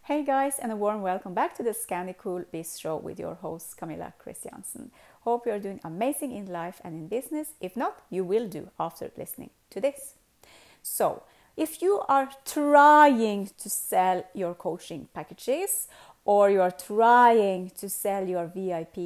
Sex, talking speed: female, 175 wpm